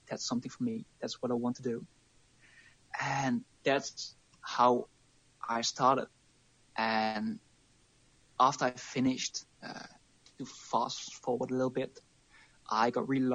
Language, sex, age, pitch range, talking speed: English, male, 20-39, 120-130 Hz, 130 wpm